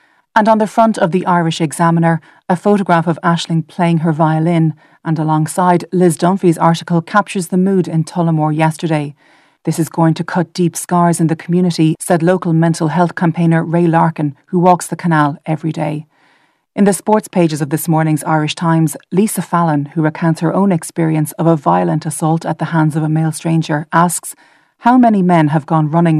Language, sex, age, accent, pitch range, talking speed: English, female, 30-49, Irish, 160-190 Hz, 190 wpm